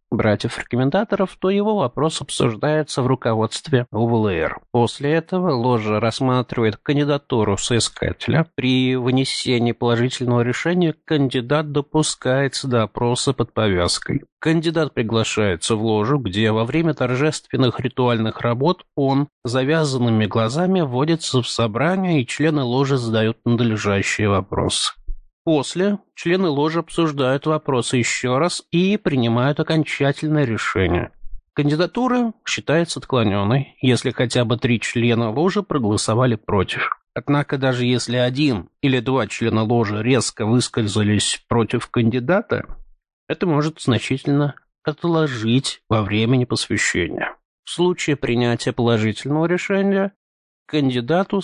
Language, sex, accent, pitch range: Russian, male, native, 115-155 Hz